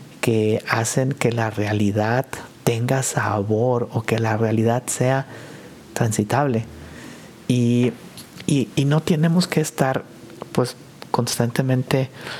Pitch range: 110-135 Hz